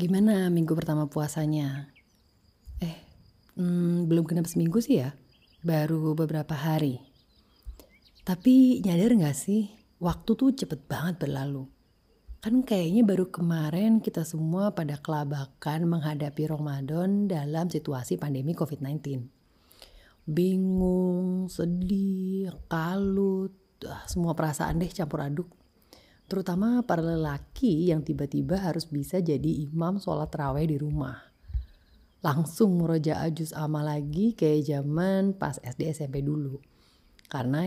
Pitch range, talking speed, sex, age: 140-180 Hz, 110 wpm, female, 30-49